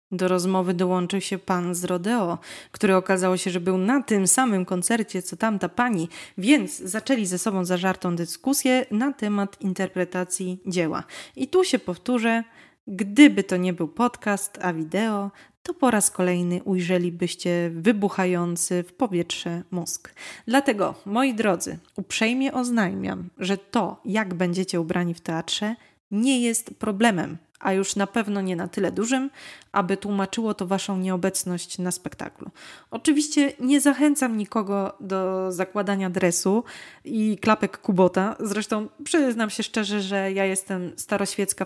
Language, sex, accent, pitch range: Polish, female, native, 180-220 Hz